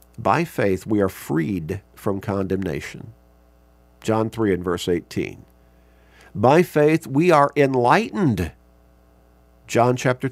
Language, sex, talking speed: English, male, 110 wpm